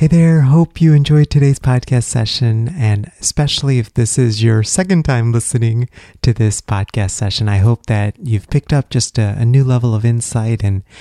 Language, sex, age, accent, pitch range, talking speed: English, male, 30-49, American, 100-120 Hz, 190 wpm